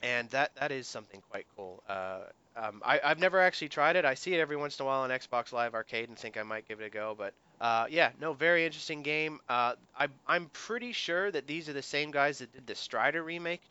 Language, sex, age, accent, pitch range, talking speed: English, male, 30-49, American, 110-145 Hz, 255 wpm